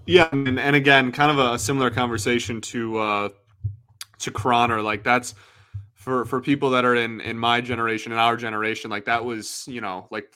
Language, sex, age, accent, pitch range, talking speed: English, male, 20-39, American, 115-140 Hz, 190 wpm